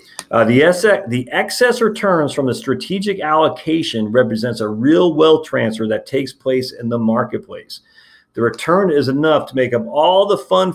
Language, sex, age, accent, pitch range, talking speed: English, male, 40-59, American, 110-155 Hz, 175 wpm